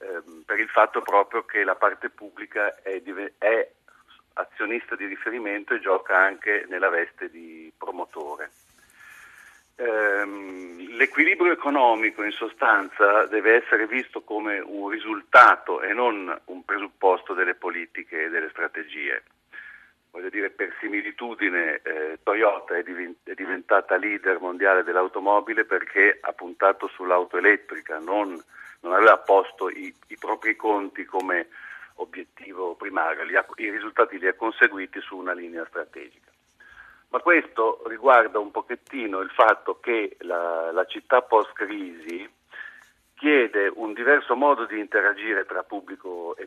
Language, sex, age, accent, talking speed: Italian, male, 50-69, native, 130 wpm